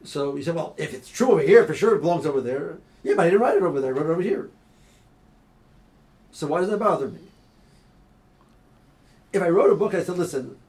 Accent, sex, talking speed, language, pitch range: American, male, 235 wpm, English, 165-210 Hz